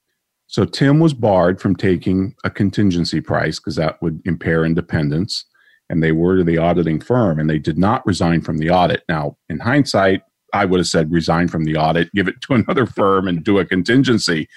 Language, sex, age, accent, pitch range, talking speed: English, male, 40-59, American, 85-115 Hz, 200 wpm